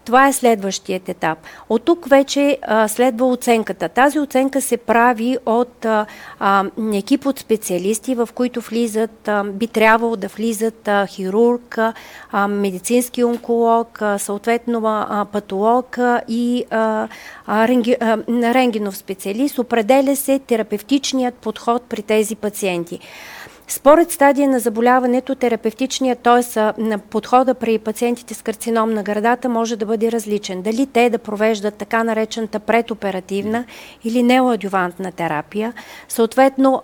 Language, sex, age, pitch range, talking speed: Bulgarian, female, 40-59, 210-245 Hz, 120 wpm